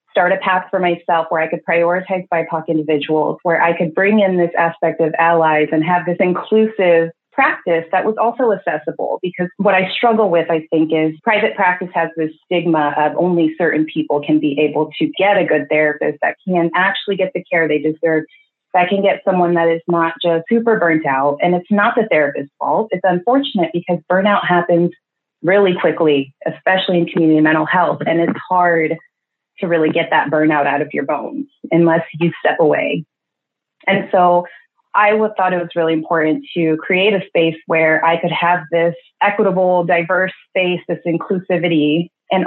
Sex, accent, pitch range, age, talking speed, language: female, American, 160-185 Hz, 30-49, 185 wpm, English